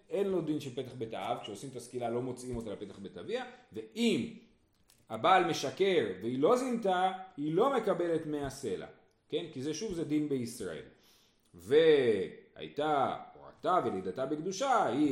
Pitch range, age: 125-195 Hz, 40-59